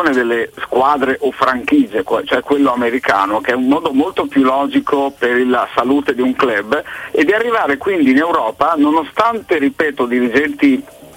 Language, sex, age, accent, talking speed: Italian, male, 50-69, native, 155 wpm